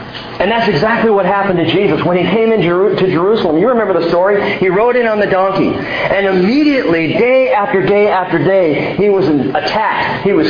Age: 40-59